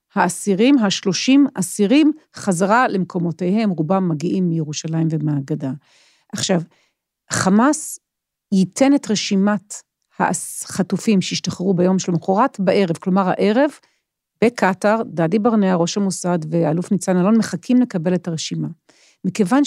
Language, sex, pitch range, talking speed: Hebrew, female, 180-220 Hz, 105 wpm